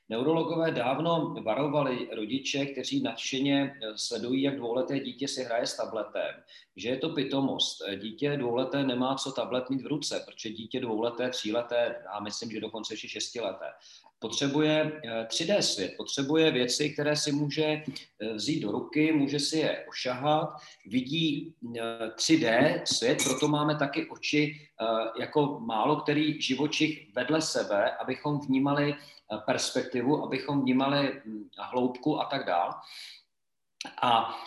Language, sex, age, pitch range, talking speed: Czech, male, 40-59, 120-155 Hz, 130 wpm